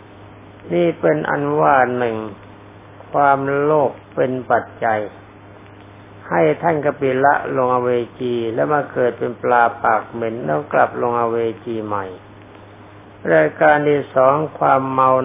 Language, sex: Thai, male